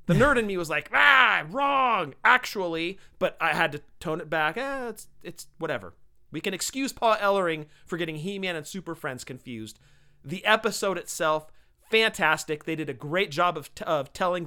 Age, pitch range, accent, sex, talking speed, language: 30-49, 140-175 Hz, American, male, 190 wpm, English